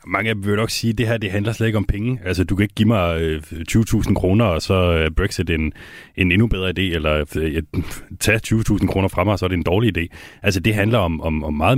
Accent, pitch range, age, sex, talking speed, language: native, 80-105 Hz, 30-49, male, 260 wpm, Danish